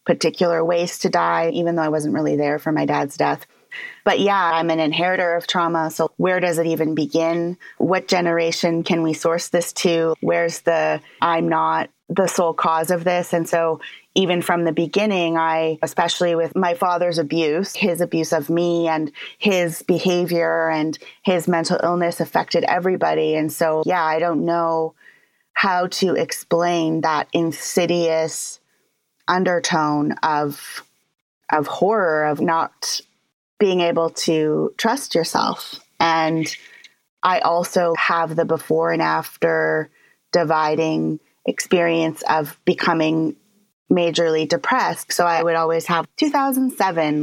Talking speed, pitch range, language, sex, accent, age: 140 wpm, 160-180 Hz, English, female, American, 30-49